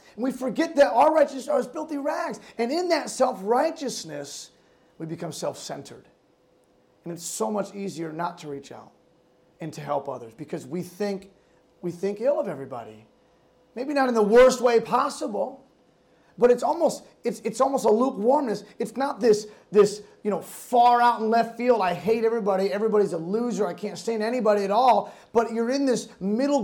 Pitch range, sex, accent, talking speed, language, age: 205-260 Hz, male, American, 180 wpm, English, 30-49